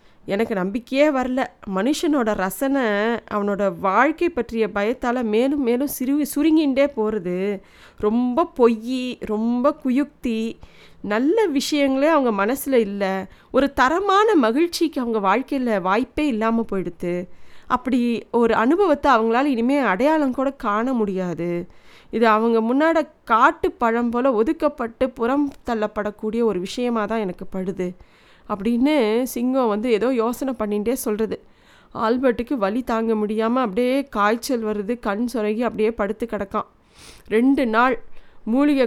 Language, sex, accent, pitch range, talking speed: Tamil, female, native, 210-260 Hz, 115 wpm